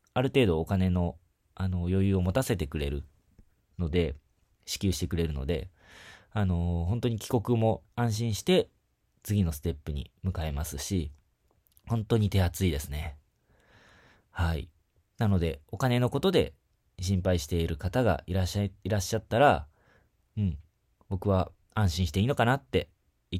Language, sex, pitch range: Japanese, male, 85-110 Hz